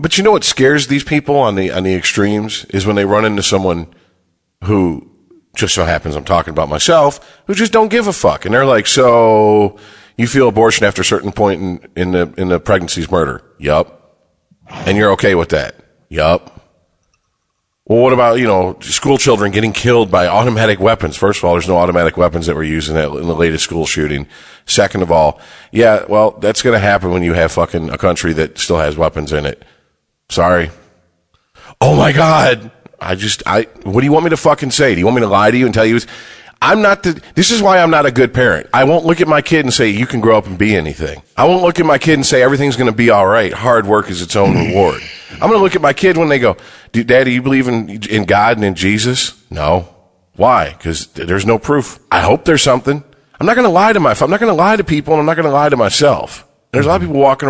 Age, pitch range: 40-59, 90-140 Hz